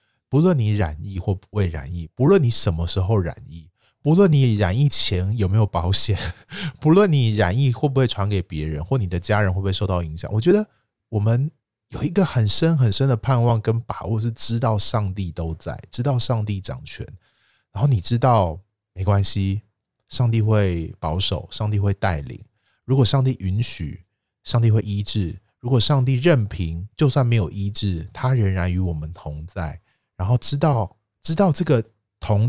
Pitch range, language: 95-125 Hz, Chinese